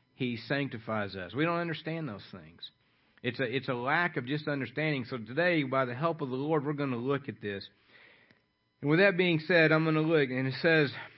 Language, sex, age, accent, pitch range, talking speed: English, male, 50-69, American, 140-190 Hz, 225 wpm